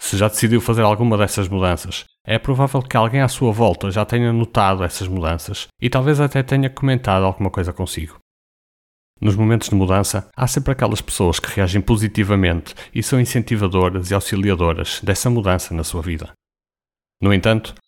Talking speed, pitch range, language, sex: 170 wpm, 90-115 Hz, Portuguese, male